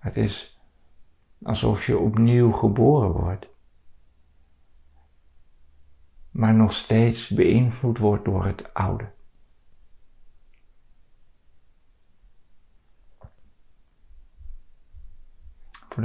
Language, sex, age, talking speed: Dutch, male, 50-69, 60 wpm